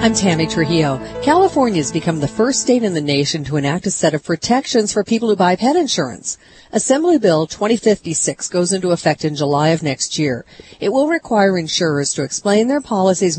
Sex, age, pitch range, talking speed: female, 40-59, 155-215 Hz, 195 wpm